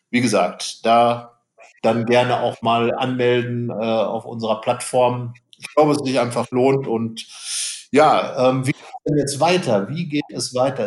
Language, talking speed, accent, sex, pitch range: German, 160 wpm, German, male, 125-145 Hz